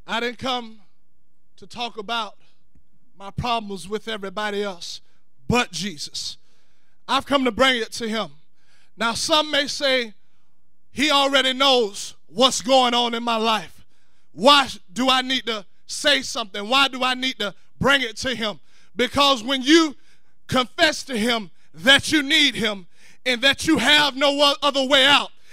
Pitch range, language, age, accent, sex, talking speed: 235-355 Hz, English, 20-39, American, male, 155 wpm